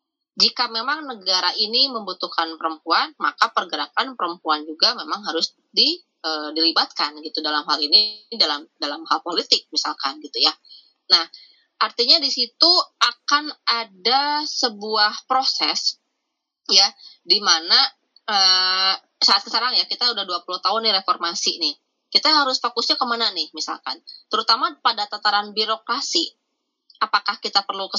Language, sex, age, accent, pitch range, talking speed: Indonesian, female, 20-39, native, 190-255 Hz, 130 wpm